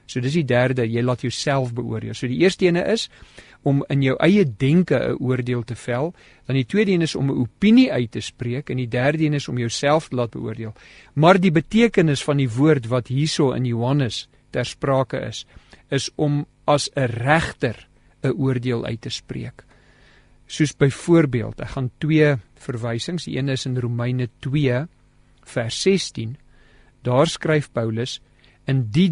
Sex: male